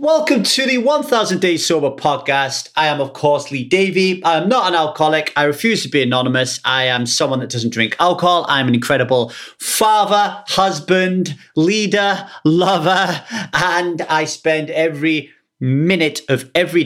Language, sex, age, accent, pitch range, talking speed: English, male, 30-49, British, 120-190 Hz, 155 wpm